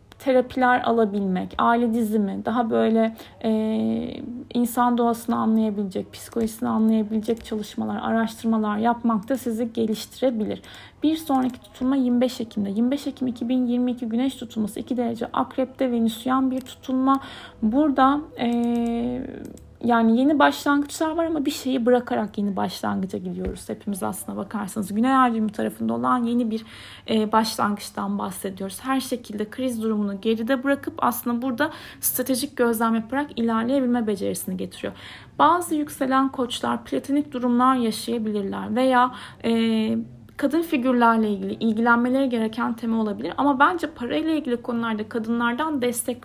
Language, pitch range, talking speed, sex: Turkish, 220-260 Hz, 125 wpm, female